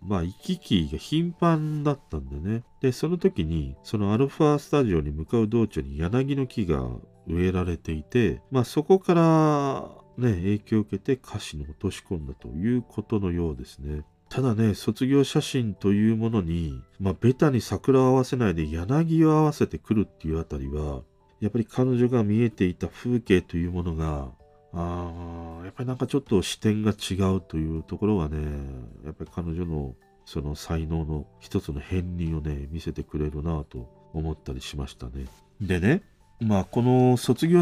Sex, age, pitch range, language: male, 40-59, 80-125 Hz, Japanese